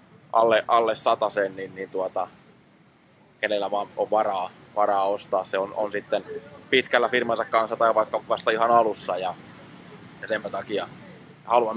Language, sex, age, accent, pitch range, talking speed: Finnish, male, 20-39, native, 100-120 Hz, 145 wpm